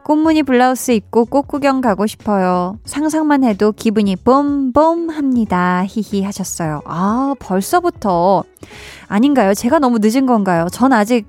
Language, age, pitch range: Korean, 20-39, 190-275 Hz